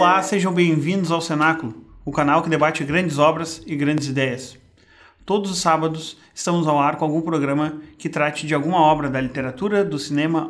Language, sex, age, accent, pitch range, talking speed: Portuguese, male, 30-49, Brazilian, 145-165 Hz, 185 wpm